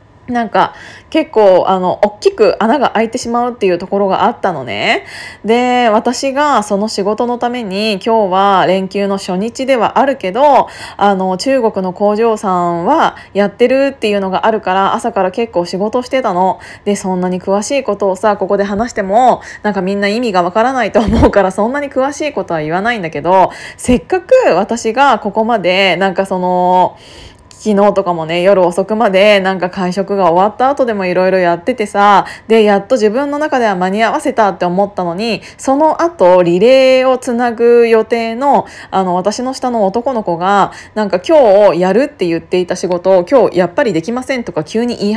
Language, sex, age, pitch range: Japanese, female, 20-39, 190-245 Hz